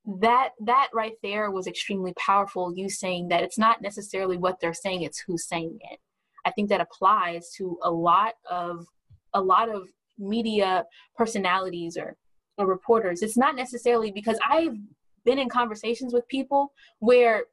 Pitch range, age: 200-275 Hz, 10-29